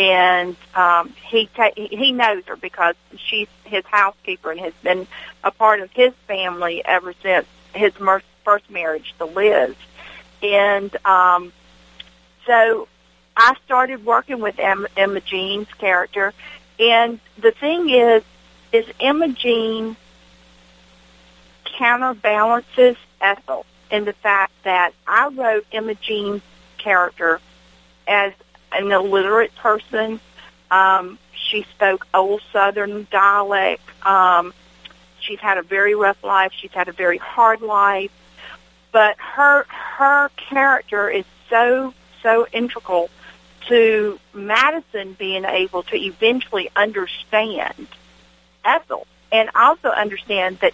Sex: female